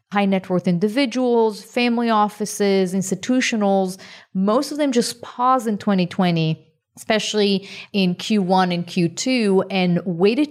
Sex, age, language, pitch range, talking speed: female, 30-49, English, 180-230 Hz, 120 wpm